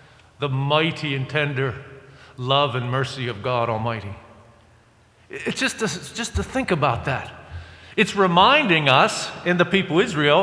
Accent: American